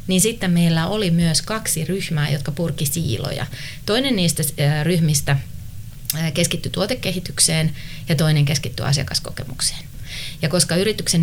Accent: native